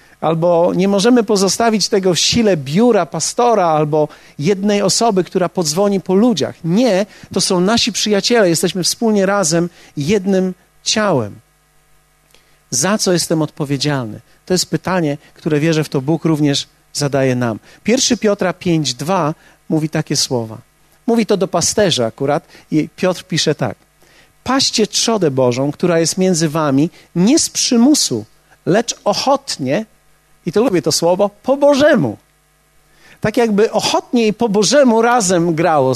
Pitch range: 160-225 Hz